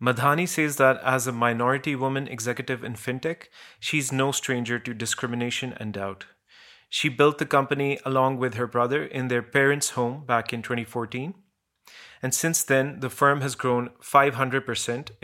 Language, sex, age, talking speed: English, male, 30-49, 160 wpm